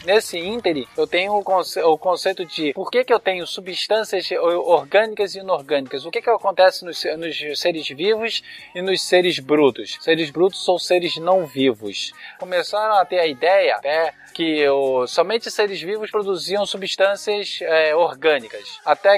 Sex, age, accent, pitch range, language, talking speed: male, 20-39, Brazilian, 175-220 Hz, Portuguese, 150 wpm